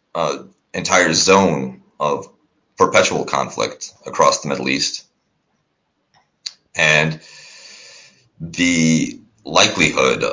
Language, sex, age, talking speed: English, male, 30-49, 75 wpm